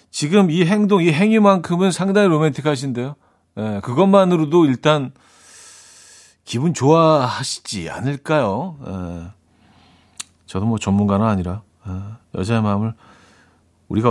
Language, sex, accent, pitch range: Korean, male, native, 105-160 Hz